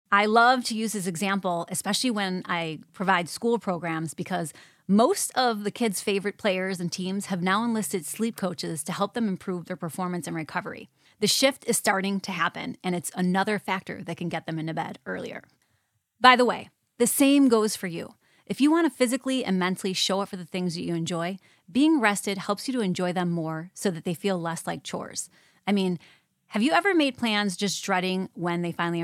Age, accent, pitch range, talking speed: 30-49, American, 175-225 Hz, 205 wpm